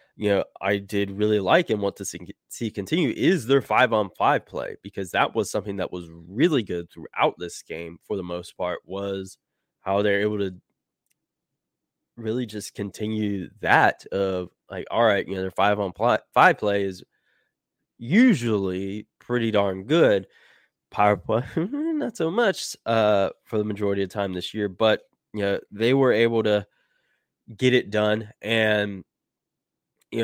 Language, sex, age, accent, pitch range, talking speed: English, male, 20-39, American, 100-115 Hz, 165 wpm